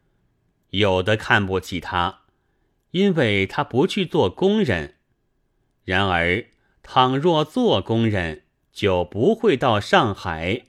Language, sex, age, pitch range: Chinese, male, 30-49, 95-140 Hz